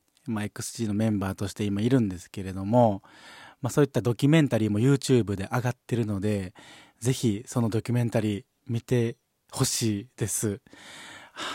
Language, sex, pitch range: Japanese, male, 110-135 Hz